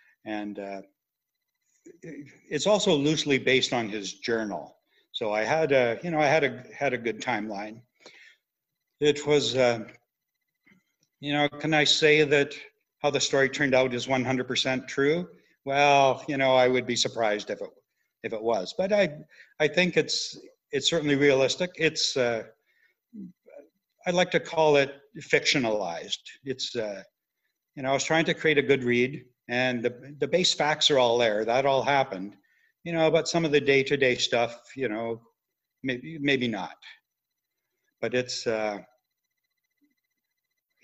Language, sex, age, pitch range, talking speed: English, male, 60-79, 120-155 Hz, 160 wpm